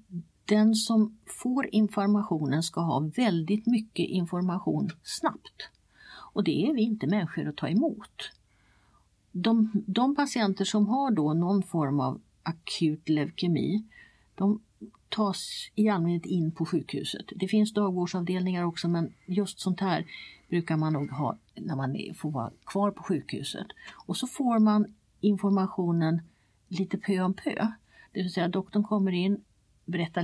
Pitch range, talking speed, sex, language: 160-210 Hz, 145 wpm, female, Swedish